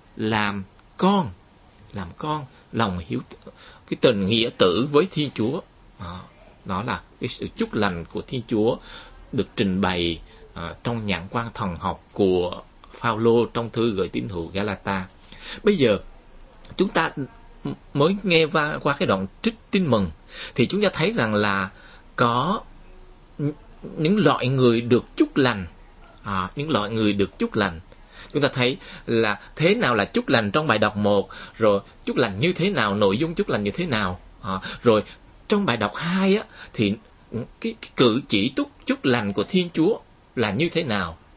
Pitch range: 95-150 Hz